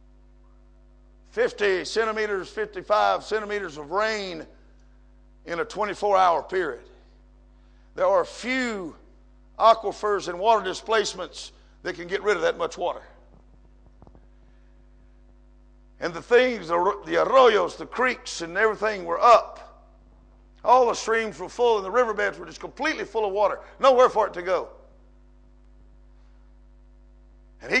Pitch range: 195-265 Hz